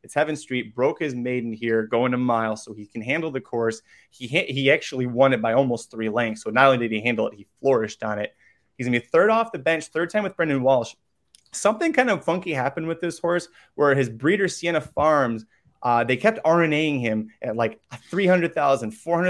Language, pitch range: English, 120-160 Hz